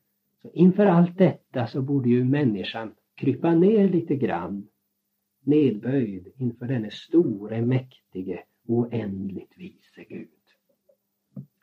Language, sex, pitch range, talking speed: Swedish, male, 120-185 Hz, 105 wpm